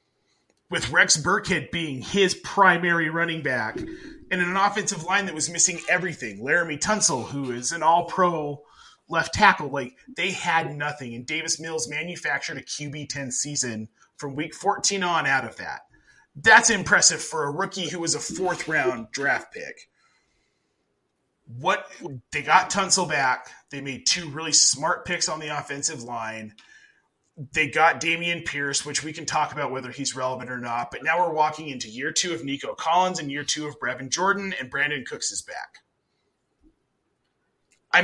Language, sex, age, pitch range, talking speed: English, male, 30-49, 145-185 Hz, 170 wpm